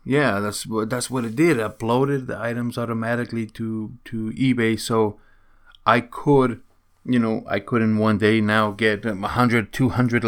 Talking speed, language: 160 wpm, English